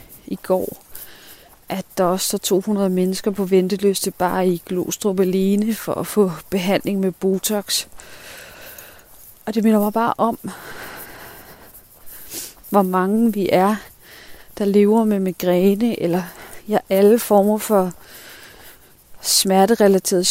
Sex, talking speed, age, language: female, 120 wpm, 30-49, Danish